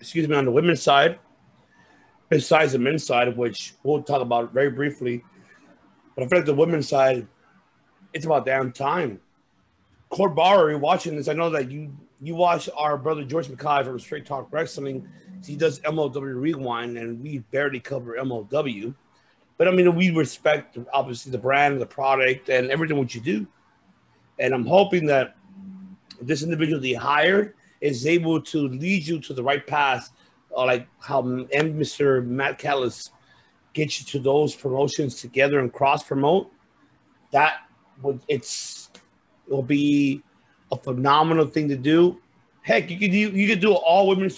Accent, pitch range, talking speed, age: American, 130-160 Hz, 165 wpm, 30-49